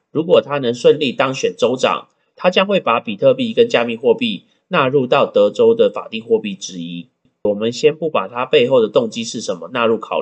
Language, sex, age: Chinese, male, 30-49